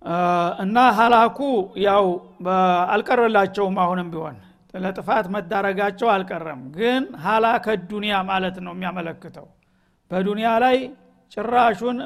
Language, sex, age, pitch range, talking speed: Amharic, male, 60-79, 195-235 Hz, 85 wpm